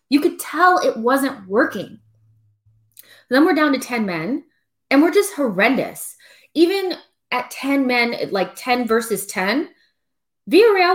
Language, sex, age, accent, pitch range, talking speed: English, female, 20-39, American, 210-305 Hz, 135 wpm